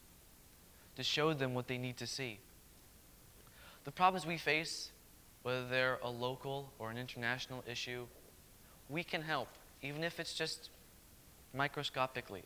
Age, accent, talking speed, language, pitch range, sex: 20-39, American, 135 wpm, English, 125-150 Hz, male